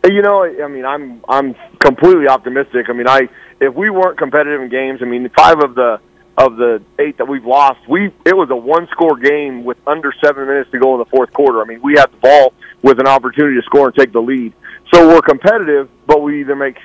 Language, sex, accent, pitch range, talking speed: English, male, American, 135-150 Hz, 240 wpm